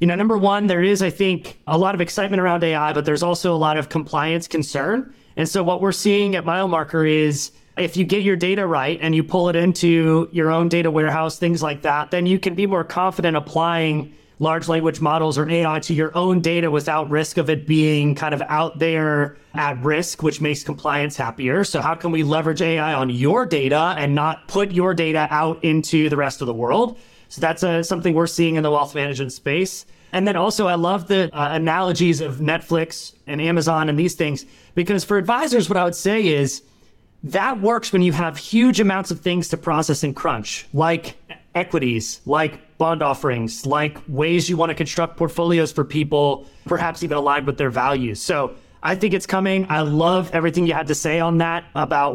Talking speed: 210 wpm